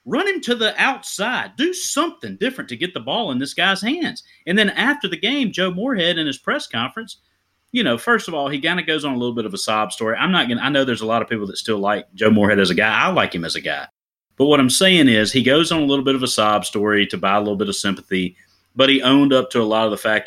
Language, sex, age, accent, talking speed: English, male, 30-49, American, 300 wpm